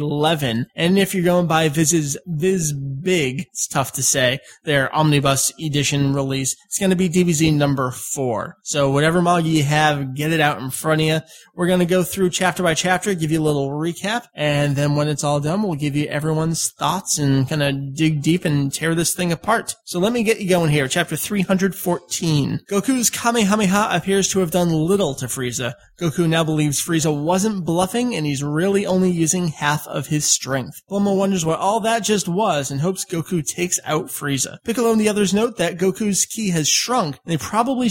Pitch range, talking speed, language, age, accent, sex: 145-195 Hz, 205 wpm, English, 20-39, American, male